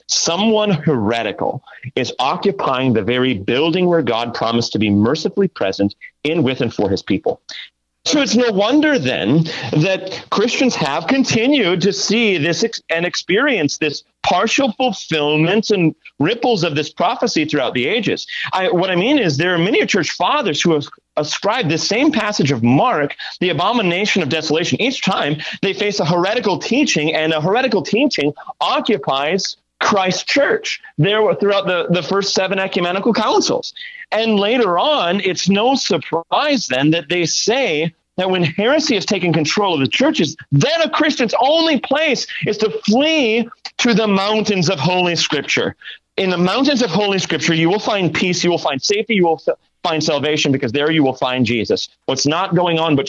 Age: 40-59